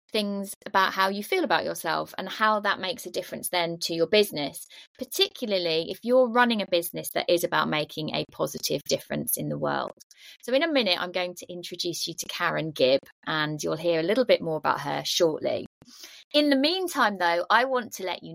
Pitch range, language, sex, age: 175-240 Hz, English, female, 20-39